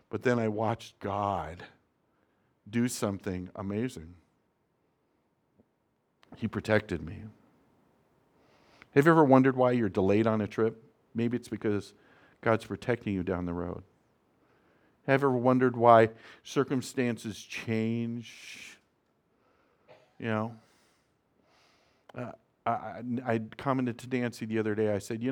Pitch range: 105-130 Hz